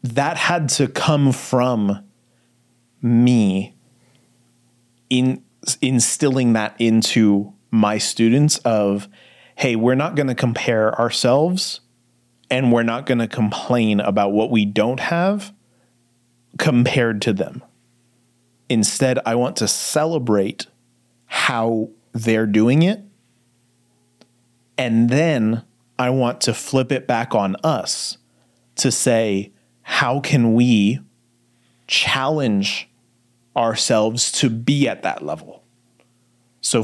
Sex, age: male, 30-49